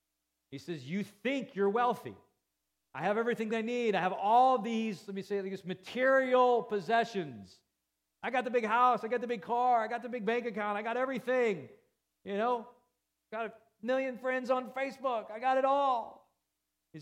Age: 40-59